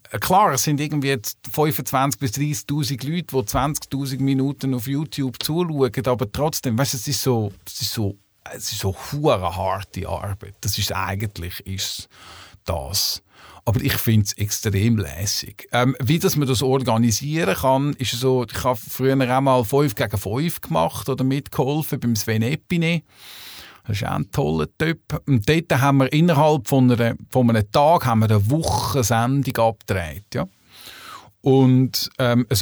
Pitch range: 105-135 Hz